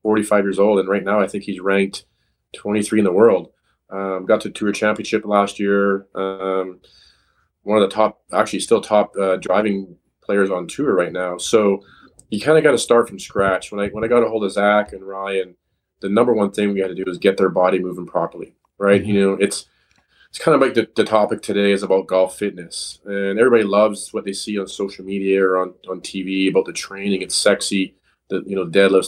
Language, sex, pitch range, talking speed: English, male, 95-105 Hz, 220 wpm